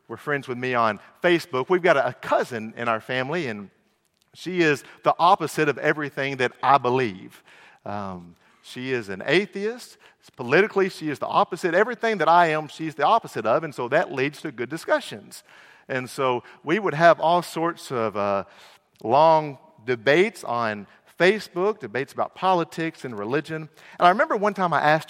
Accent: American